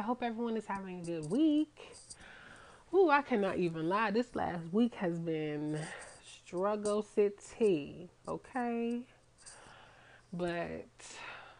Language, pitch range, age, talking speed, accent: English, 170-220 Hz, 20-39, 115 wpm, American